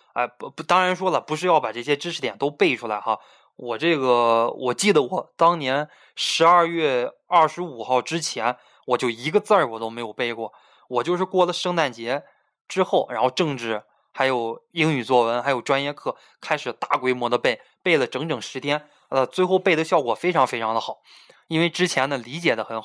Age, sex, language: 20-39, male, Chinese